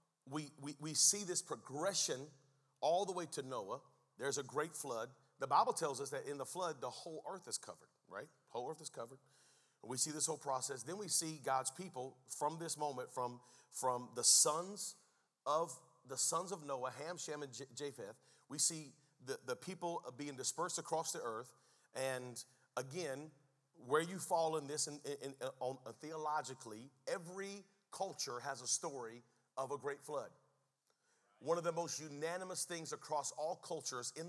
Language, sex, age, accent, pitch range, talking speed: English, male, 40-59, American, 130-165 Hz, 180 wpm